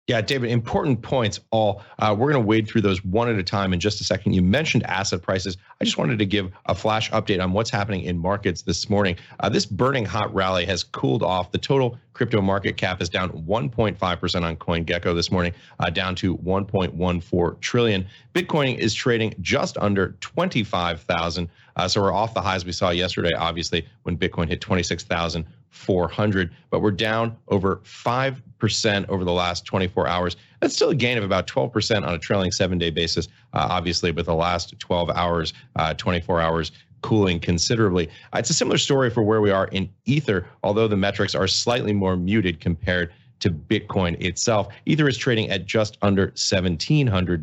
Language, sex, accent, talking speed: English, male, American, 190 wpm